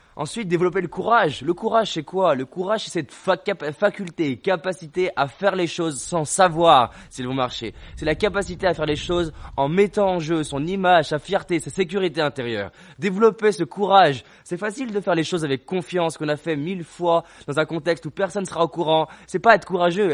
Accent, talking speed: French, 205 wpm